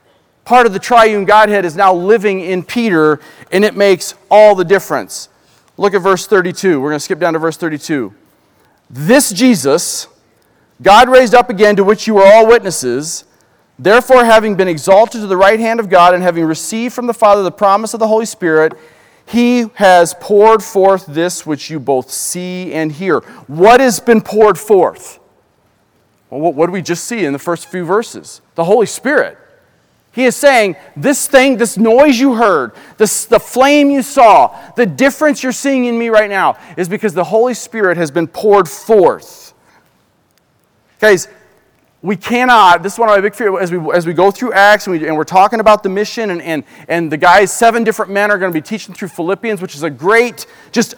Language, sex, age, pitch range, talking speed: English, male, 40-59, 175-225 Hz, 200 wpm